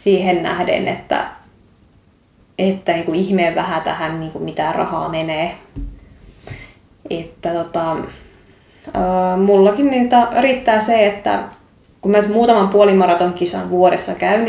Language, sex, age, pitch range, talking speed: Finnish, female, 20-39, 170-195 Hz, 115 wpm